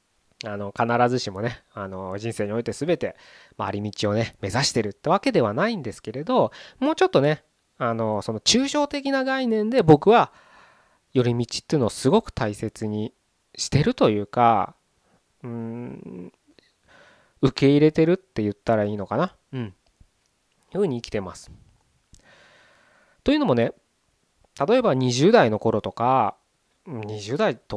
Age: 20-39